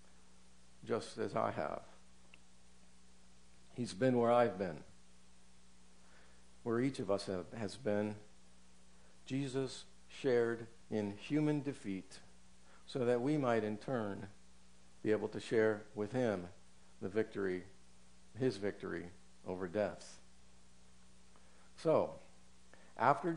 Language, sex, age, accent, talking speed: English, male, 60-79, American, 105 wpm